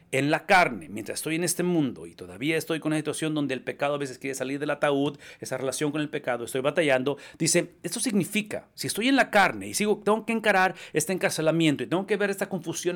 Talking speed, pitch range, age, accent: 235 wpm, 150-200 Hz, 40-59, Mexican